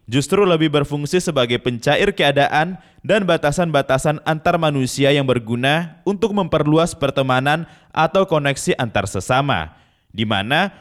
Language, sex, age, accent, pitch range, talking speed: Indonesian, male, 20-39, native, 130-175 Hz, 110 wpm